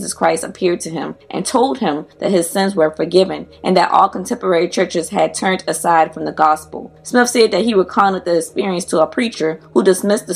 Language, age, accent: English, 20-39, American